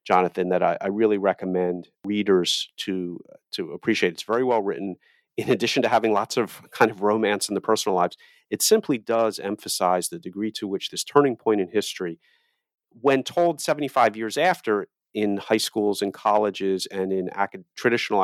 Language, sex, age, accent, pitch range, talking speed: English, male, 40-59, American, 95-115 Hz, 180 wpm